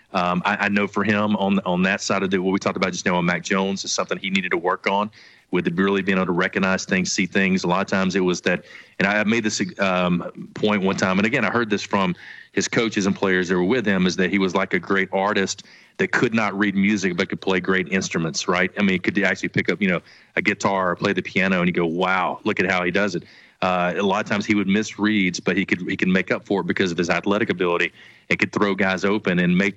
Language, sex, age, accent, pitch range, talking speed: English, male, 30-49, American, 90-100 Hz, 285 wpm